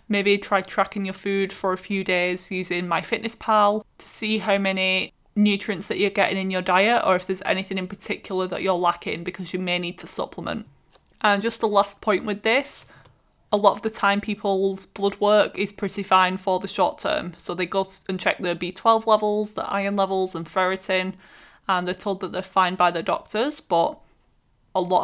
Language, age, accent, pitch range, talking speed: English, 20-39, British, 185-205 Hz, 200 wpm